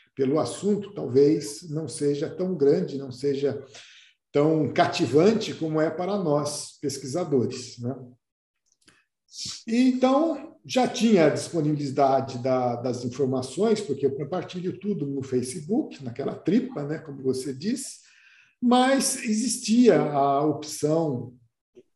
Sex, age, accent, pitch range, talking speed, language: male, 50-69, Brazilian, 140-215 Hz, 110 wpm, Portuguese